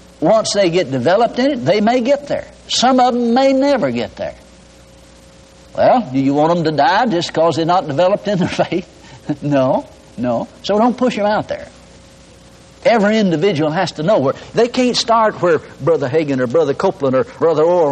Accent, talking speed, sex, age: American, 195 wpm, male, 60-79